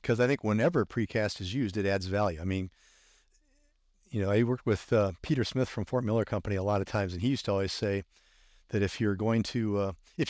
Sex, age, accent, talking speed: male, 50-69, American, 240 wpm